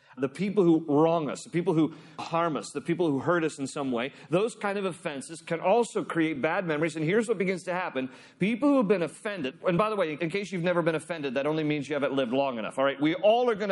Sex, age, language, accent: male, 40-59, English, American